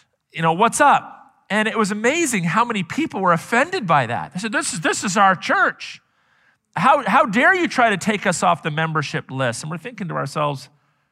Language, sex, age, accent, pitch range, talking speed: English, male, 40-59, American, 170-235 Hz, 215 wpm